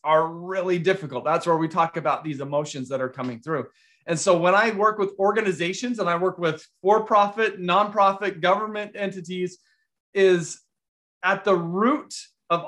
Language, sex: English, male